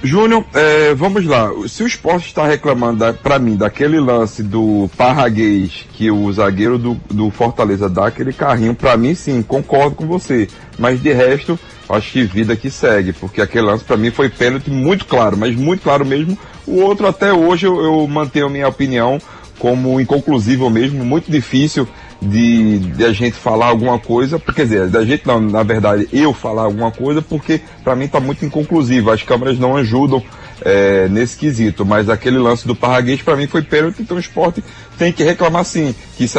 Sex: male